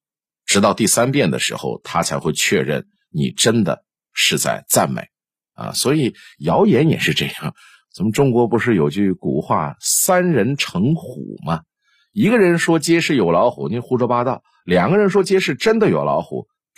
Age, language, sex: 50-69, Chinese, male